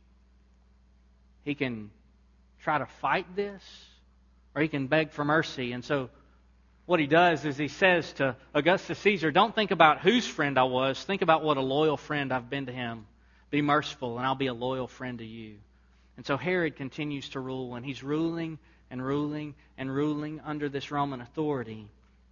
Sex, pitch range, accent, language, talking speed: male, 115-155 Hz, American, English, 180 wpm